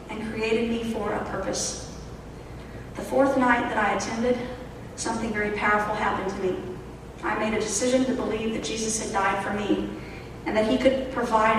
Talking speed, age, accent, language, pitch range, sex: 180 wpm, 40-59, American, English, 200-240 Hz, female